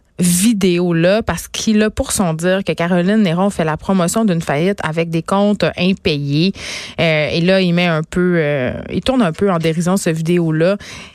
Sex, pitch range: female, 170-210 Hz